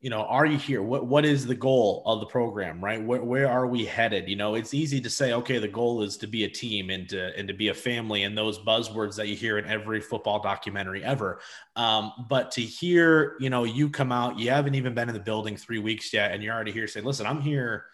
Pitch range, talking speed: 110-140 Hz, 260 wpm